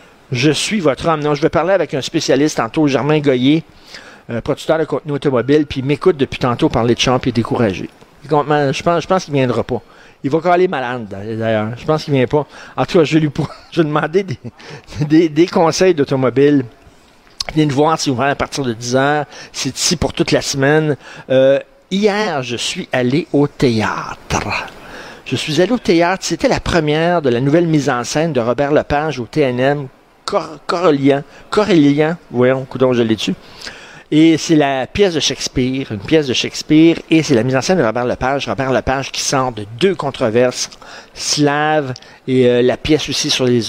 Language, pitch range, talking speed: French, 125-155 Hz, 200 wpm